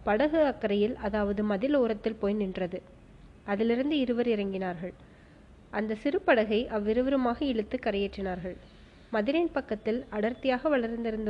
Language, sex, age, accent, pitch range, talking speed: Tamil, female, 20-39, native, 205-250 Hz, 100 wpm